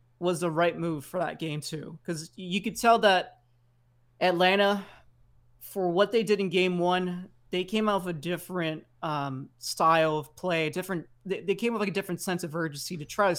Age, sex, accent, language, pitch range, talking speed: 20-39, male, American, English, 155-190 Hz, 195 wpm